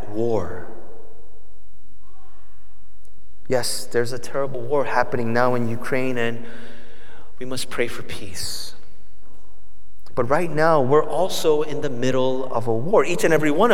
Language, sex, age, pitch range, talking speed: English, male, 30-49, 105-150 Hz, 135 wpm